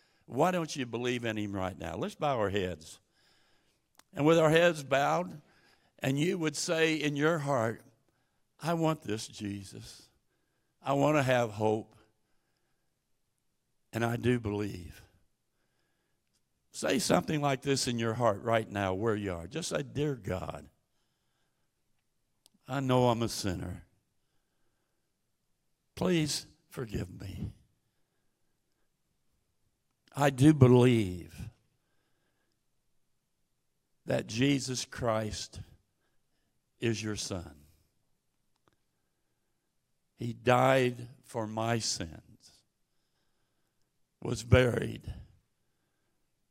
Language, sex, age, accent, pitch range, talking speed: English, male, 60-79, American, 100-135 Hz, 100 wpm